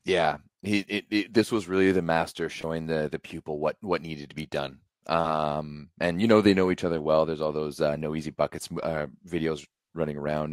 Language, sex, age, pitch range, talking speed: English, male, 30-49, 80-110 Hz, 220 wpm